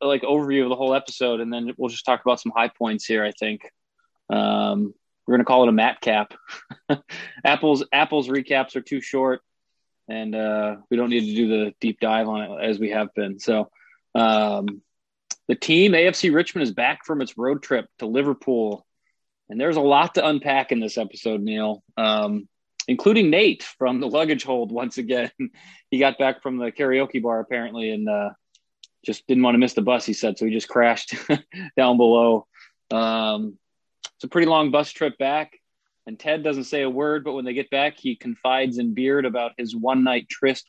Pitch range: 115-140 Hz